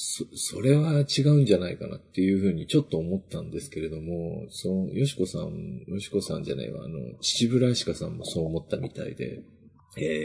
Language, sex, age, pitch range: Japanese, male, 40-59, 90-115 Hz